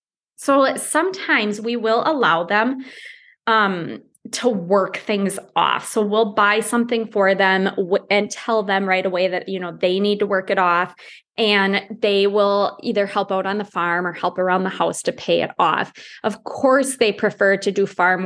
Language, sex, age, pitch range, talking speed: English, female, 20-39, 190-235 Hz, 185 wpm